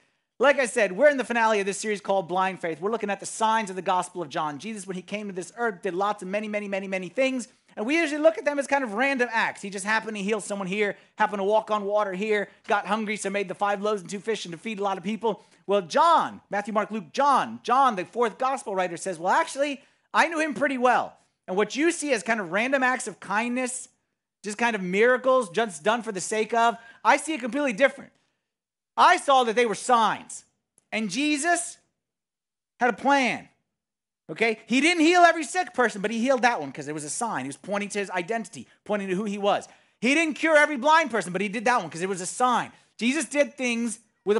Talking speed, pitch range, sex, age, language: 245 wpm, 200-255 Hz, male, 30-49, English